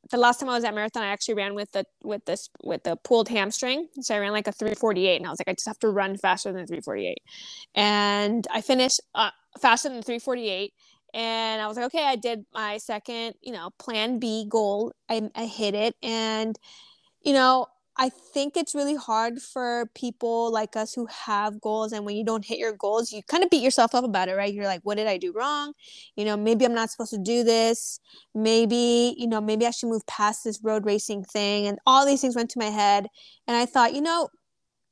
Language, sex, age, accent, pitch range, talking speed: English, female, 20-39, American, 205-240 Hz, 230 wpm